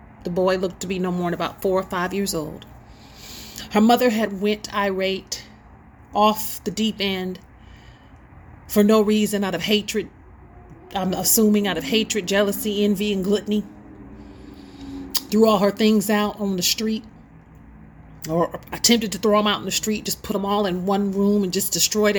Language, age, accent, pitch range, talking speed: English, 40-59, American, 185-215 Hz, 175 wpm